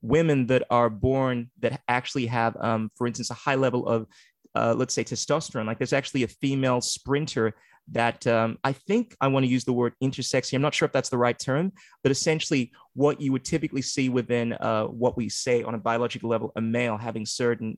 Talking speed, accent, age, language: 215 wpm, American, 30-49, English